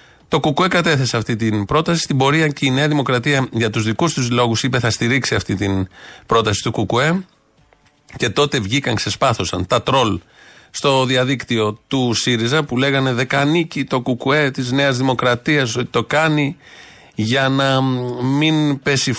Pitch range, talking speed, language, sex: 115-145 Hz, 155 wpm, Greek, male